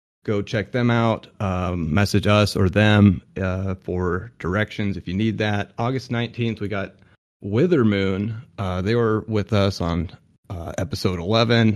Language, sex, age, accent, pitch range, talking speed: English, male, 30-49, American, 95-115 Hz, 155 wpm